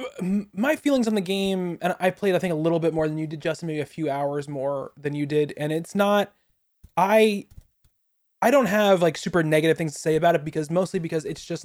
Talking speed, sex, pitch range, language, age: 235 wpm, male, 145-175 Hz, English, 20-39